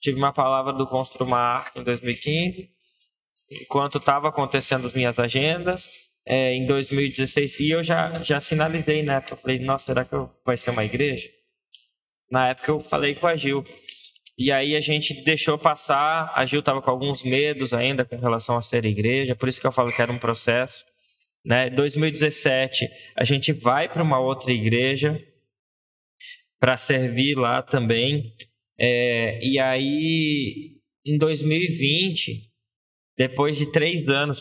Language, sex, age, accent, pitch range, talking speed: Portuguese, male, 20-39, Brazilian, 120-145 Hz, 155 wpm